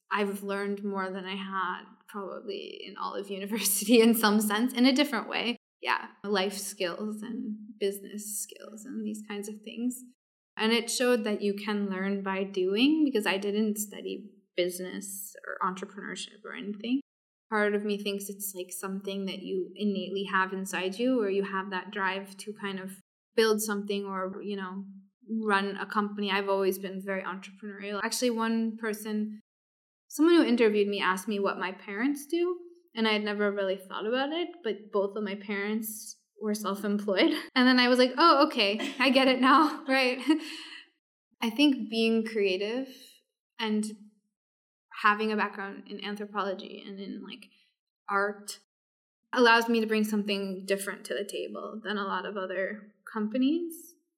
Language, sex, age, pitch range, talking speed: English, female, 20-39, 195-230 Hz, 165 wpm